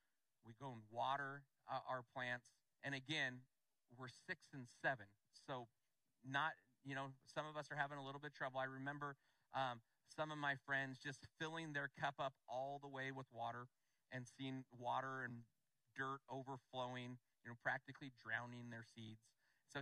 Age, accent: 40-59, American